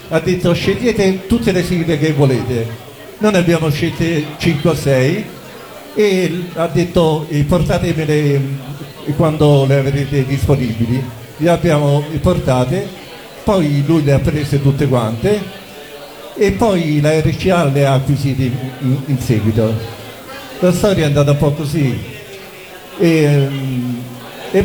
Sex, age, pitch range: male, 50-69, 140-185 Hz